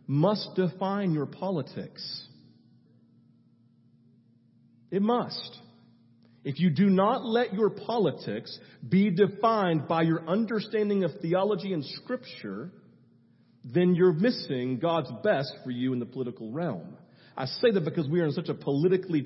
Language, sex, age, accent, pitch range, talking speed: English, male, 40-59, American, 165-225 Hz, 135 wpm